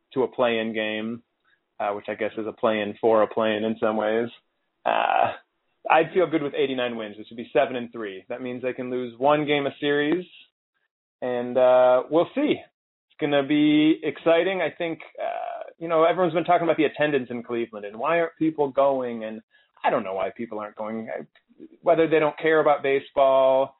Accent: American